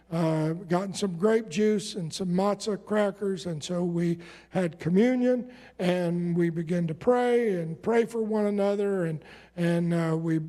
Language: English